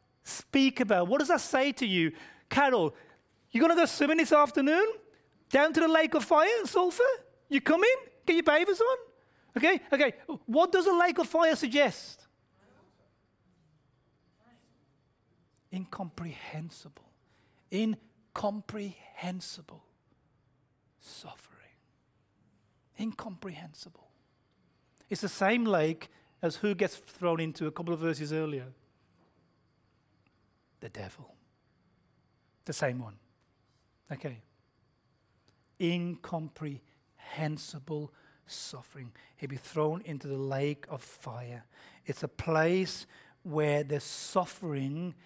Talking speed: 105 wpm